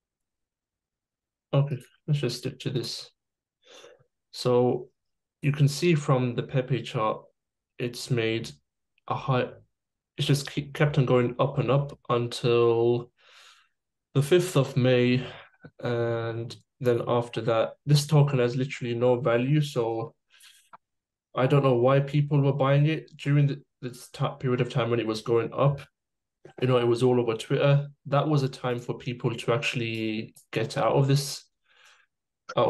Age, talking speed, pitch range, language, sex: 20-39, 145 wpm, 120-140 Hz, English, male